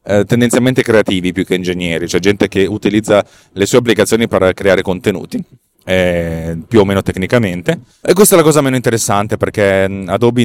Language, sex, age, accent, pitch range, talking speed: Italian, male, 30-49, native, 95-120 Hz, 165 wpm